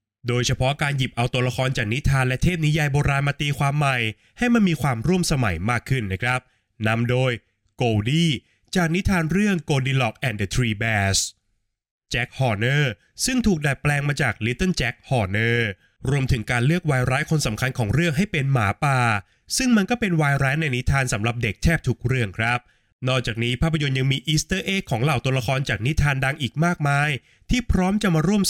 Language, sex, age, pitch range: Thai, male, 20-39, 115-150 Hz